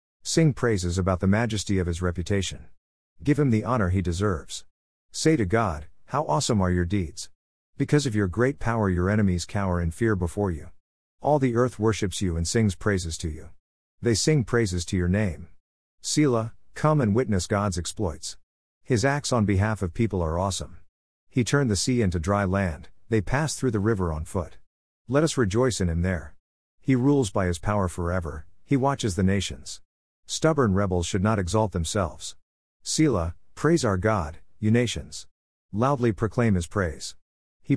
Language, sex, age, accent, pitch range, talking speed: English, male, 50-69, American, 85-120 Hz, 175 wpm